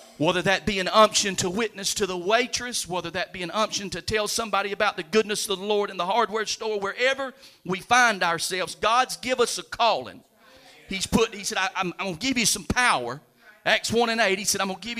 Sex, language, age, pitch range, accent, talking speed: male, English, 40-59, 165-210 Hz, American, 240 wpm